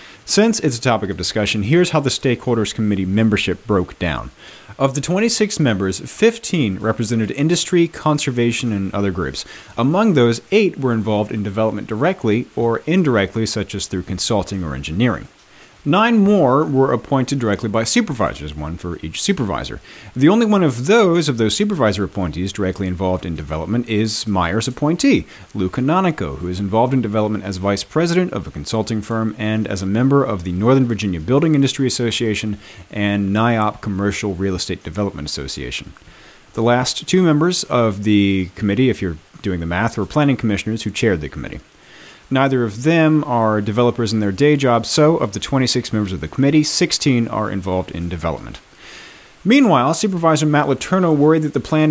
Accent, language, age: American, English, 40-59